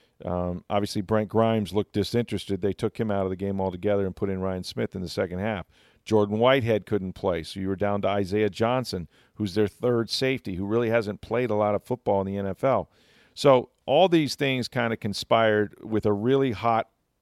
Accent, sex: American, male